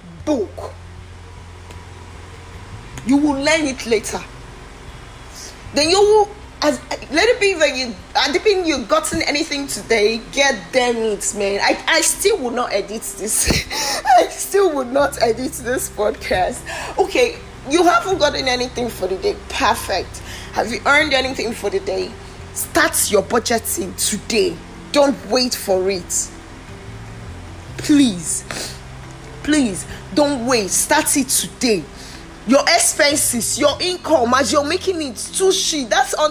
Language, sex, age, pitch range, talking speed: English, female, 20-39, 200-315 Hz, 135 wpm